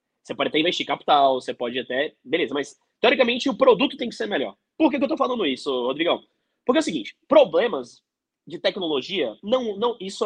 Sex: male